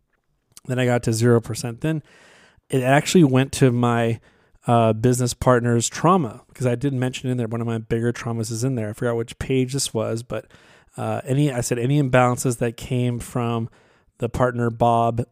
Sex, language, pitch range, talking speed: male, English, 115-130 Hz, 190 wpm